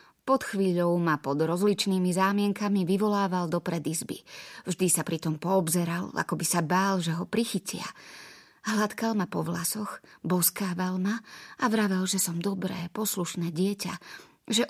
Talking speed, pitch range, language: 145 wpm, 175-210 Hz, Slovak